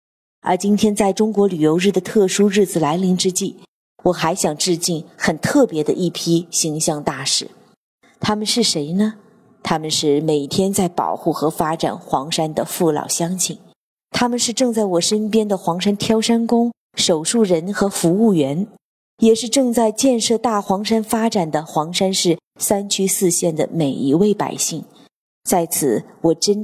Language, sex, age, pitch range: Chinese, female, 30-49, 165-220 Hz